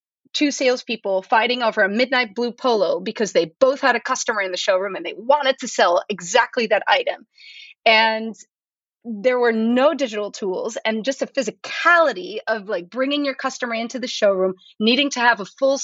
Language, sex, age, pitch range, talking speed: English, female, 30-49, 220-275 Hz, 180 wpm